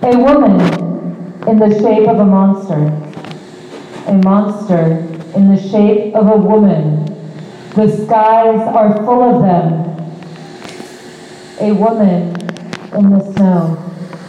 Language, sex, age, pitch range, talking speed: English, female, 40-59, 180-235 Hz, 115 wpm